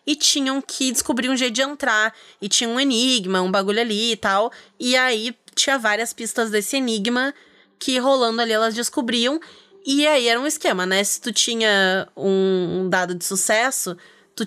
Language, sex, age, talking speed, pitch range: Portuguese, female, 20-39, 180 wpm, 200-255 Hz